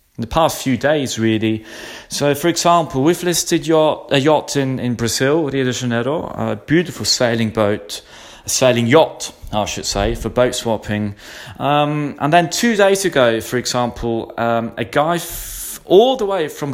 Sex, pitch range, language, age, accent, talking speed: male, 115-160 Hz, English, 30-49, British, 170 wpm